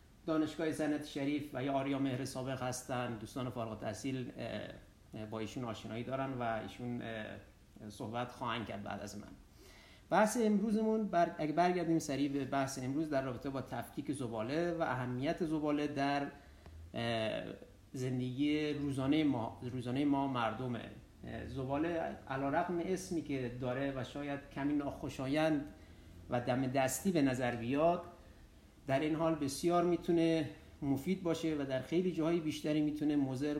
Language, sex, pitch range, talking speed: Persian, male, 125-150 Hz, 140 wpm